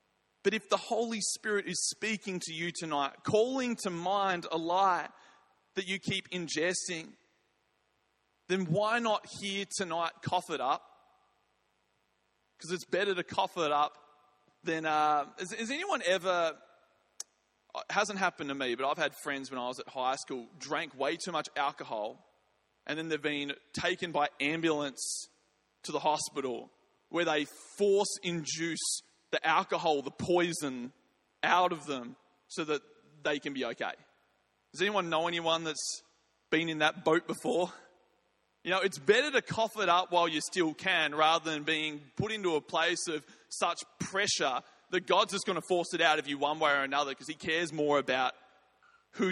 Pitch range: 150-190 Hz